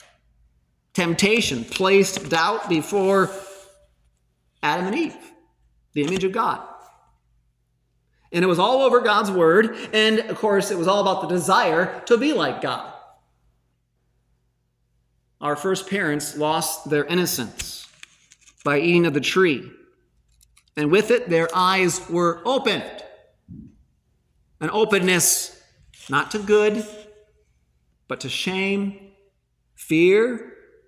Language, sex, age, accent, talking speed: English, male, 40-59, American, 115 wpm